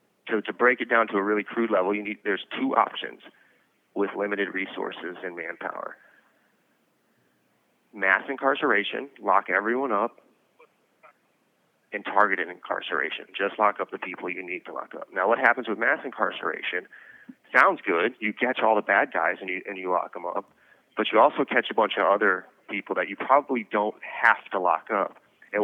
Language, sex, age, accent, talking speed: English, male, 30-49, American, 185 wpm